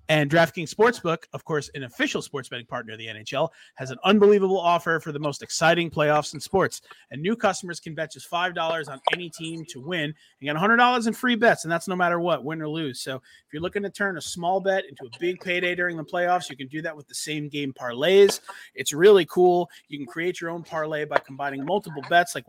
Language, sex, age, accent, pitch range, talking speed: English, male, 30-49, American, 150-200 Hz, 235 wpm